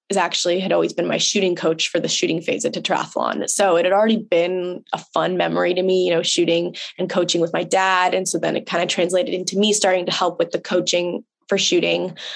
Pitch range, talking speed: 170-190 Hz, 240 wpm